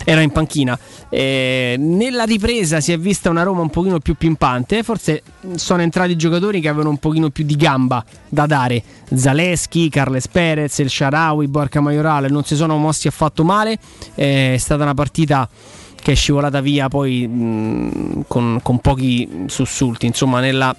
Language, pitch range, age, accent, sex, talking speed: Italian, 125-160 Hz, 20-39, native, male, 165 wpm